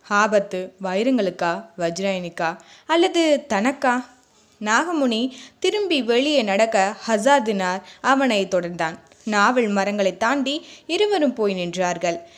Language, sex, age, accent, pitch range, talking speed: Tamil, female, 20-39, native, 195-275 Hz, 85 wpm